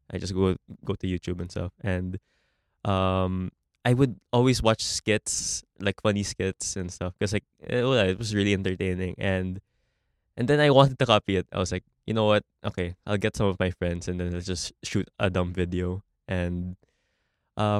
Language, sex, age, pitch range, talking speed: Filipino, male, 20-39, 90-105 Hz, 195 wpm